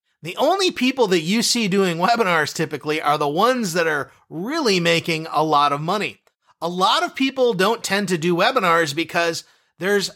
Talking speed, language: 185 wpm, English